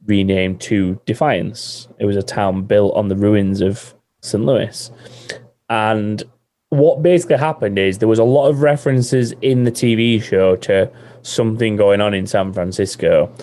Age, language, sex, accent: 20-39, English, male, British